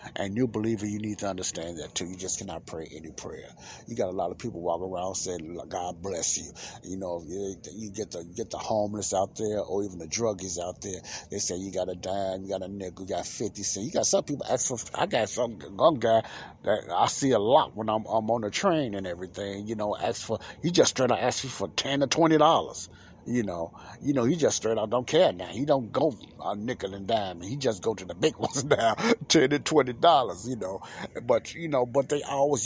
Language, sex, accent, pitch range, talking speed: English, male, American, 95-130 Hz, 250 wpm